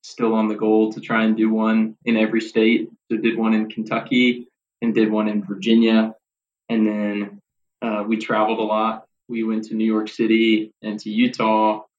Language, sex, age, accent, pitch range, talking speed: English, male, 20-39, American, 110-115 Hz, 190 wpm